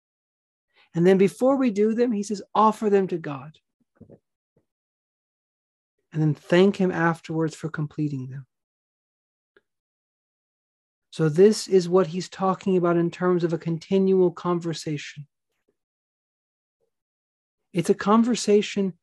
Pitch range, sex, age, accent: 160-200 Hz, male, 40-59, American